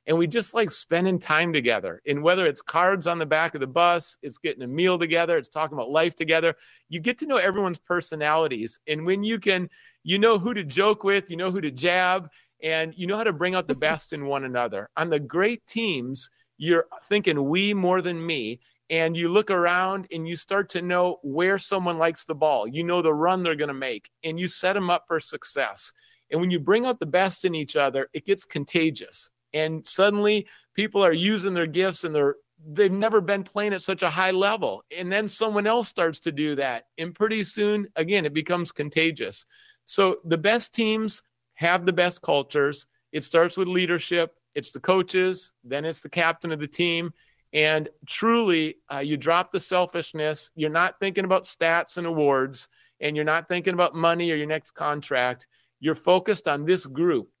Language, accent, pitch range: English, American, 155-190 Hz